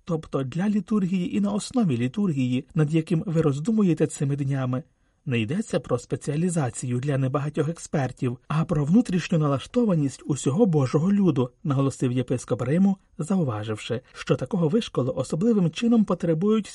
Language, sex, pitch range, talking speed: Ukrainian, male, 130-180 Hz, 135 wpm